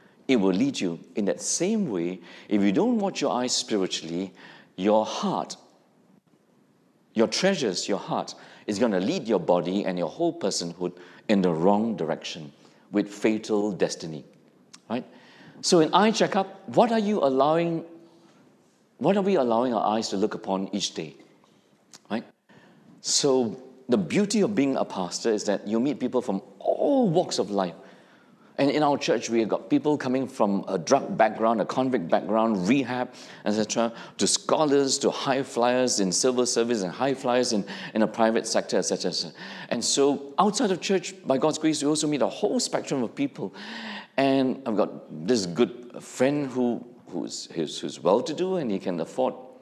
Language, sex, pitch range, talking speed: English, male, 110-170 Hz, 170 wpm